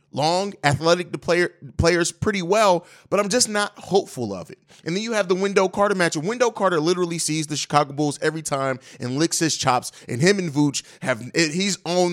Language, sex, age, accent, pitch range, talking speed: English, male, 30-49, American, 150-190 Hz, 215 wpm